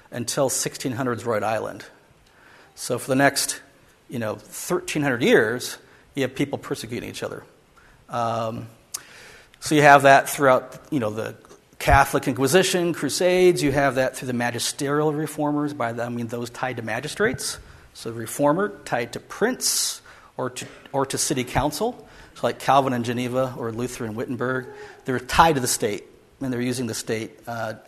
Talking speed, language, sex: 170 wpm, English, male